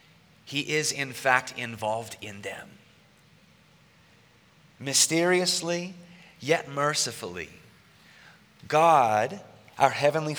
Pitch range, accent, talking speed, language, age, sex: 130-170 Hz, American, 75 wpm, English, 30-49, male